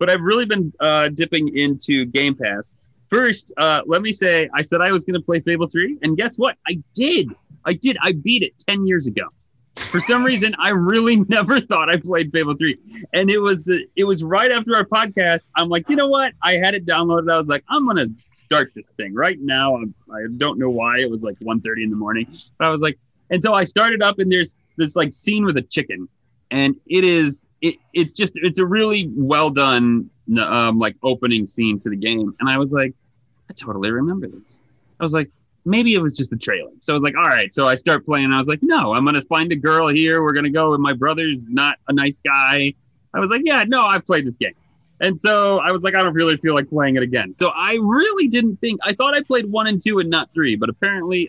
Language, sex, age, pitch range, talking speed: English, male, 30-49, 135-195 Hz, 250 wpm